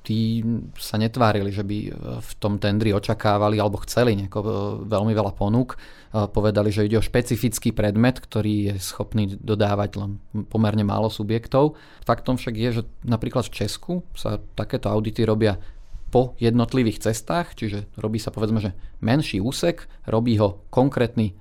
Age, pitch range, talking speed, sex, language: 30-49, 105-120 Hz, 145 wpm, male, Slovak